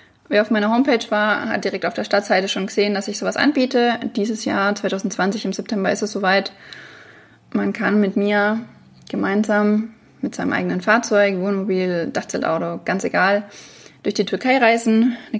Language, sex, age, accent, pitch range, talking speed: English, female, 20-39, German, 195-225 Hz, 165 wpm